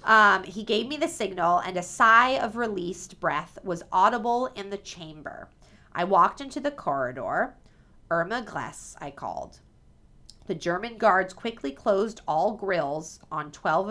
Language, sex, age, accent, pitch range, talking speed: English, female, 30-49, American, 160-215 Hz, 150 wpm